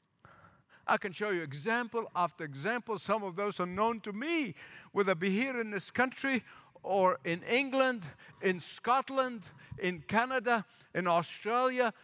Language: English